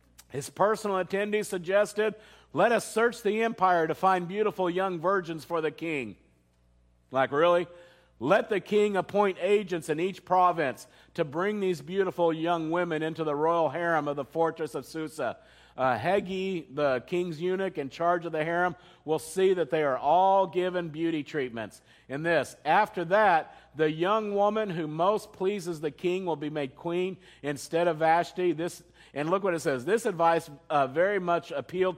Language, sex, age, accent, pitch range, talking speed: English, male, 50-69, American, 155-195 Hz, 175 wpm